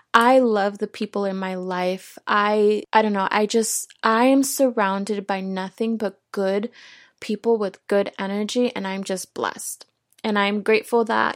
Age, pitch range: 20-39, 200-235 Hz